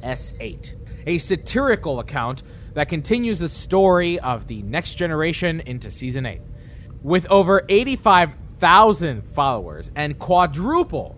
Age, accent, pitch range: 20-39, American, 125-185 Hz